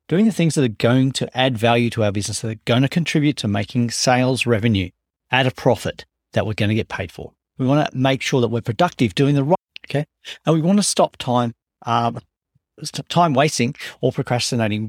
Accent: Australian